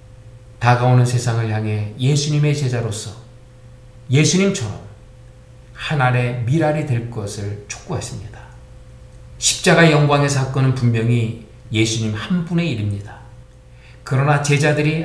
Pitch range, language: 110-145 Hz, Korean